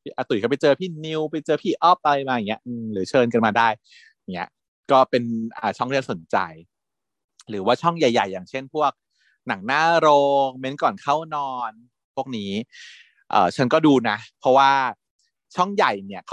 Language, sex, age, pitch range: Thai, male, 30-49, 115-155 Hz